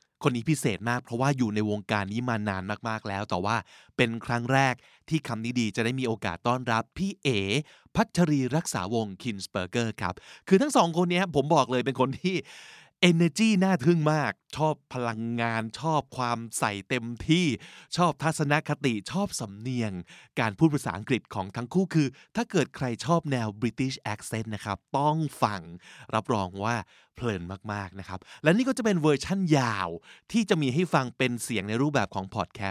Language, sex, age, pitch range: Thai, male, 20-39, 110-150 Hz